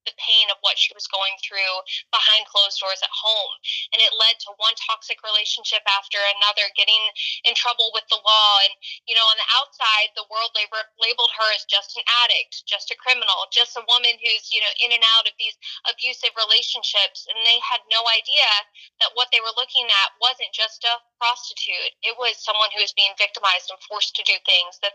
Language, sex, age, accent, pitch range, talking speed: English, female, 20-39, American, 205-235 Hz, 205 wpm